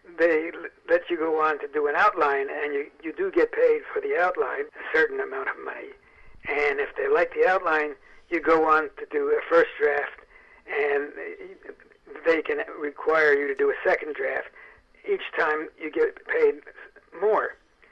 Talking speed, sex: 180 wpm, male